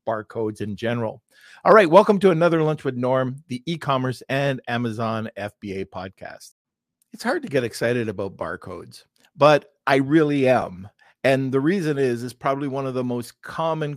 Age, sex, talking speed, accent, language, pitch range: 50-69, male, 170 wpm, American, English, 110-140 Hz